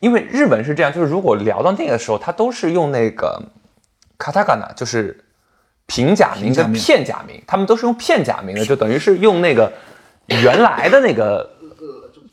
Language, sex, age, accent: Chinese, male, 20-39, native